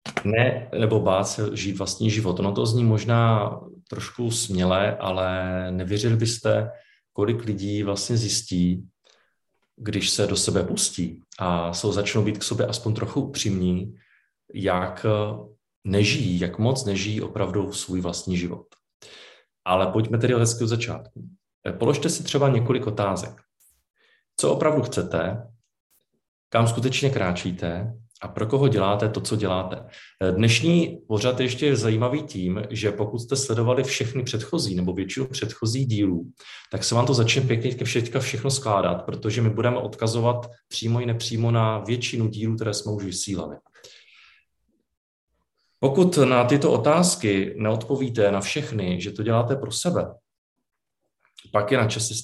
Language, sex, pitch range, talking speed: Czech, male, 100-120 Hz, 140 wpm